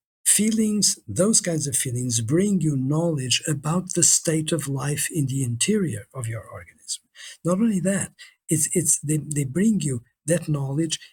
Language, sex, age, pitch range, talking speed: English, male, 50-69, 135-175 Hz, 160 wpm